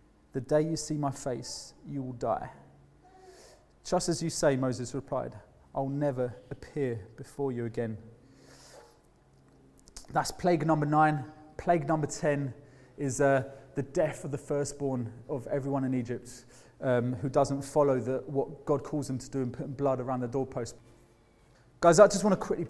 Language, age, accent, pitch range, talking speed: English, 20-39, British, 125-150 Hz, 160 wpm